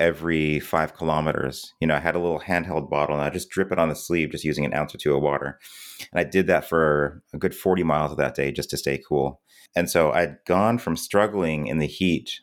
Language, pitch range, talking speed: English, 75-85 Hz, 250 wpm